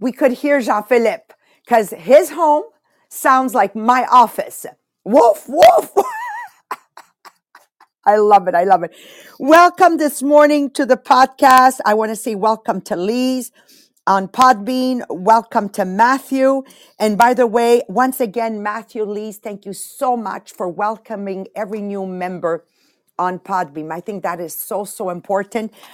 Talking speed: 150 wpm